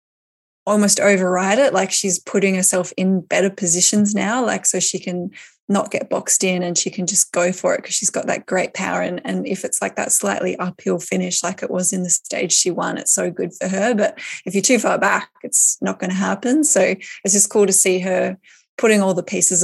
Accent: Australian